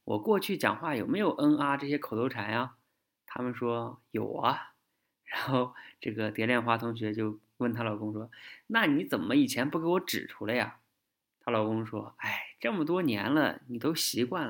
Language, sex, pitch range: Chinese, male, 110-160 Hz